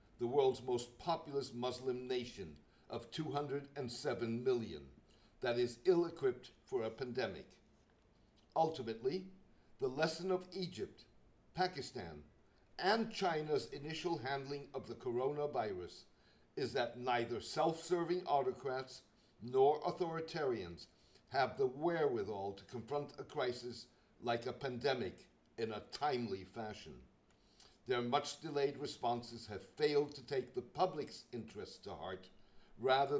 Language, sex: English, male